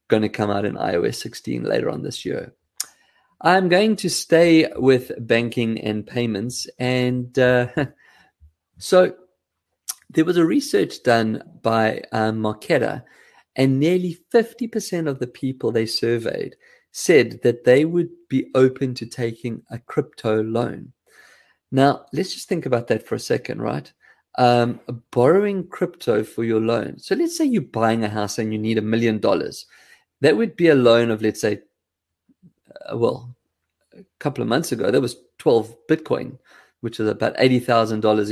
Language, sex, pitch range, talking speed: English, male, 115-155 Hz, 160 wpm